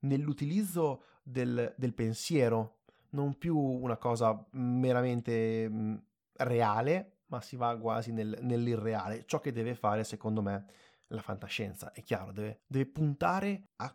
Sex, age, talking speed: male, 30-49, 125 wpm